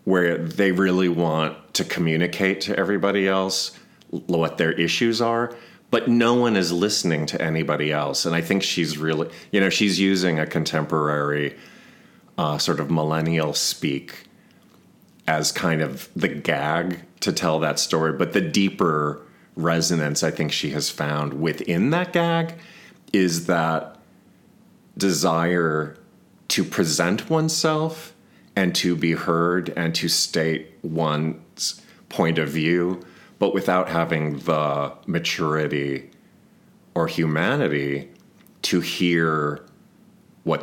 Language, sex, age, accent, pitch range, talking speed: English, male, 40-59, American, 75-95 Hz, 125 wpm